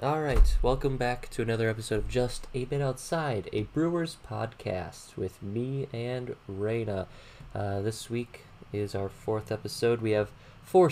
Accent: American